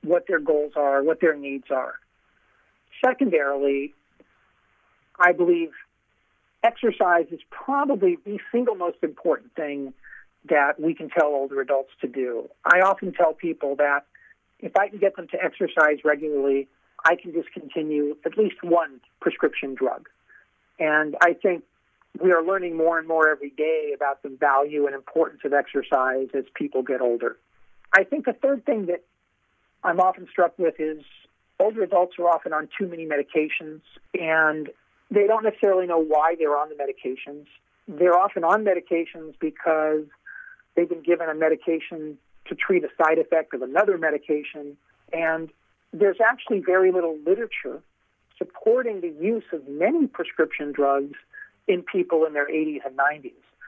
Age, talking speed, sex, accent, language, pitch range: 50-69, 155 wpm, male, American, English, 145-195 Hz